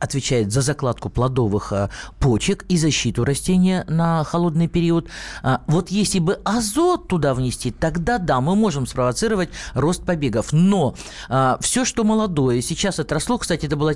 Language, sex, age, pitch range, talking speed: Russian, male, 50-69, 150-215 Hz, 140 wpm